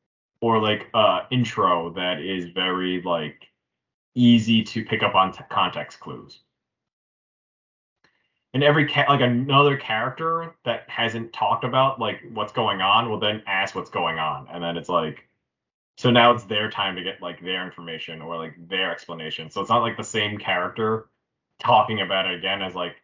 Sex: male